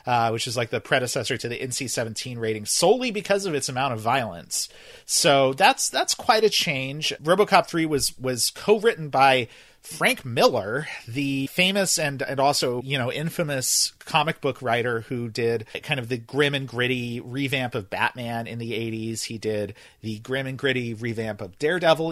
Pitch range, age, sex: 130-190 Hz, 40-59, male